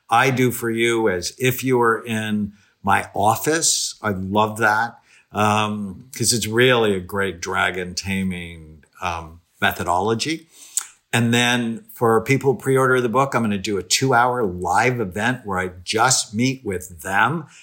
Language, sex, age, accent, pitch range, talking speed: English, male, 50-69, American, 95-120 Hz, 155 wpm